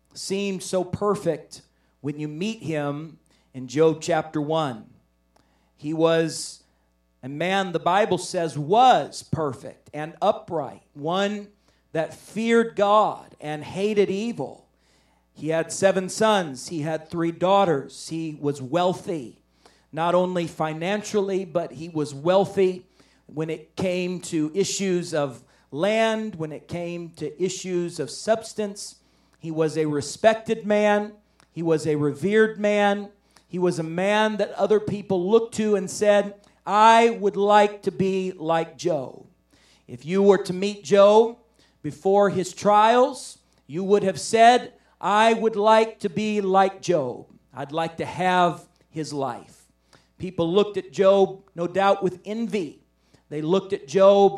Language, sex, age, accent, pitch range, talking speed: English, male, 40-59, American, 160-205 Hz, 140 wpm